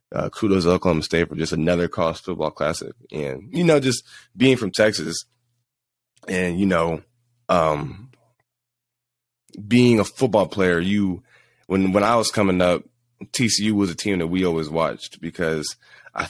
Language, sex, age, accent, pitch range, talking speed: English, male, 20-39, American, 85-105 Hz, 160 wpm